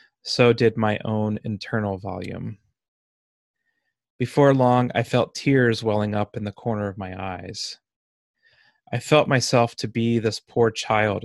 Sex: male